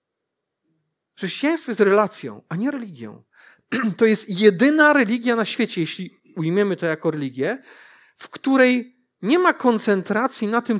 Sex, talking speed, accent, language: male, 135 wpm, native, Polish